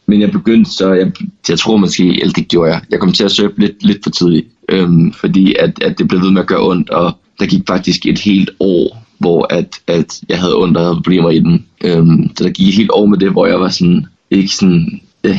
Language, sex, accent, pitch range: Danish, male, native, 90-100 Hz